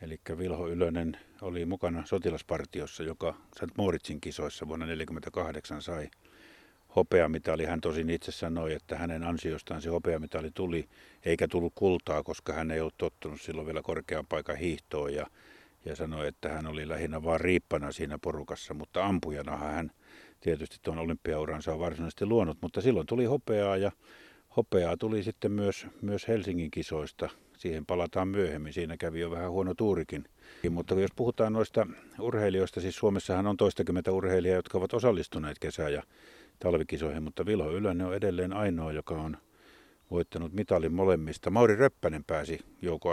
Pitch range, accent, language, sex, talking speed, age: 80-95 Hz, native, Finnish, male, 150 wpm, 50-69